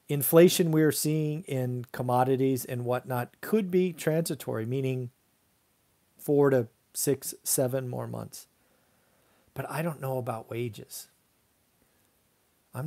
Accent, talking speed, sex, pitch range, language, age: American, 115 wpm, male, 130-180 Hz, English, 40-59